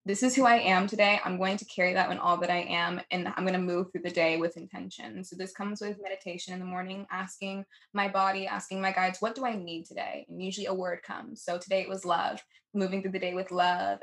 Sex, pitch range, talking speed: female, 180-200 Hz, 260 wpm